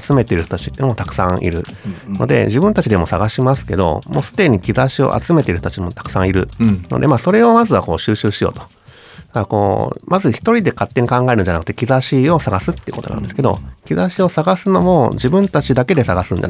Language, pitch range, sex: Japanese, 90-135 Hz, male